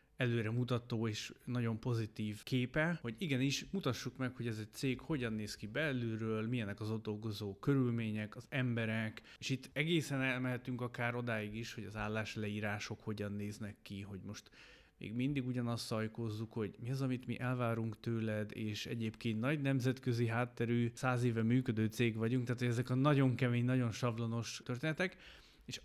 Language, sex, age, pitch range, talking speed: Hungarian, male, 30-49, 110-130 Hz, 160 wpm